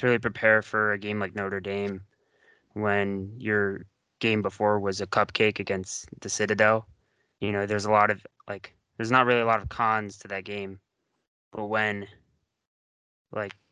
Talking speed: 165 wpm